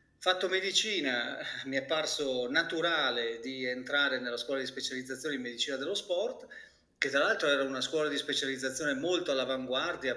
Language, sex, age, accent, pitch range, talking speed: Italian, male, 40-59, native, 130-175 Hz, 155 wpm